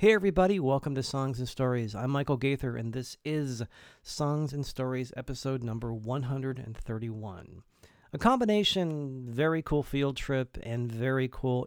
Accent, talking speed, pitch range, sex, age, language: American, 145 wpm, 115-140 Hz, male, 40-59, English